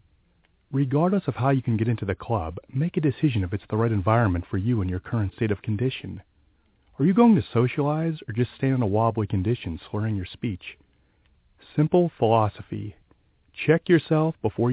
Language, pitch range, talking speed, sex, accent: English, 95-130 Hz, 185 wpm, male, American